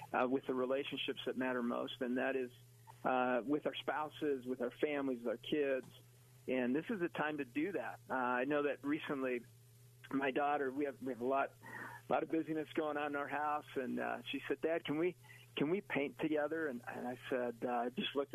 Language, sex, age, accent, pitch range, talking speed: English, male, 50-69, American, 130-155 Hz, 220 wpm